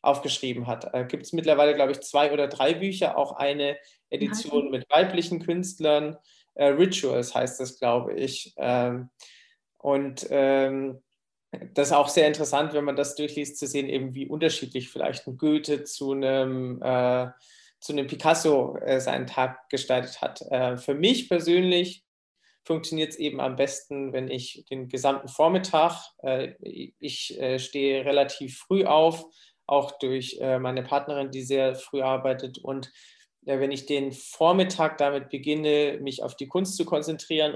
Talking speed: 150 wpm